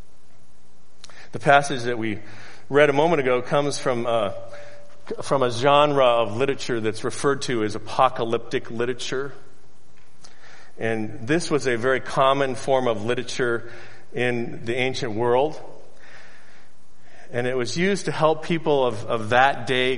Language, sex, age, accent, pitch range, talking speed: English, male, 40-59, American, 110-150 Hz, 140 wpm